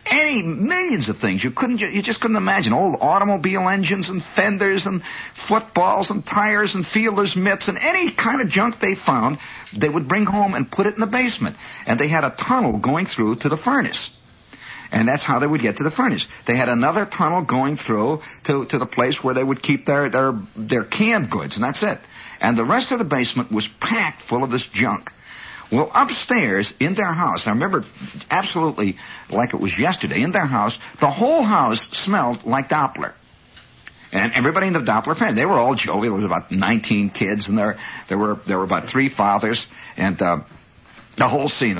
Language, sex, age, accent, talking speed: English, male, 60-79, American, 205 wpm